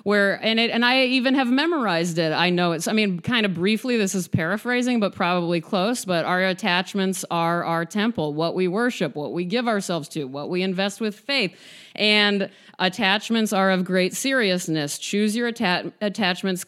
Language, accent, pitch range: English, American, 185-245 Hz